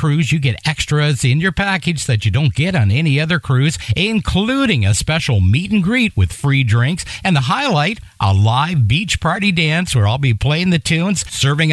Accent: American